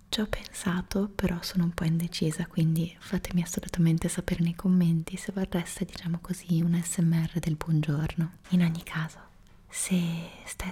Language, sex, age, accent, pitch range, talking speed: Italian, female, 20-39, native, 170-185 Hz, 145 wpm